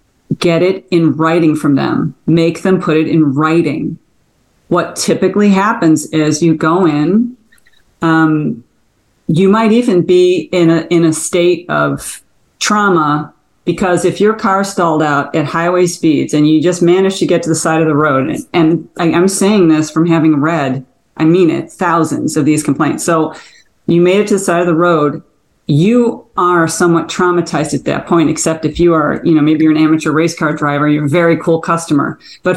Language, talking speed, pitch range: English, 190 wpm, 155-180 Hz